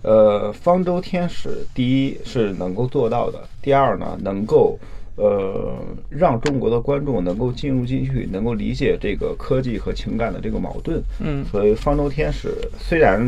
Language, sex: Chinese, male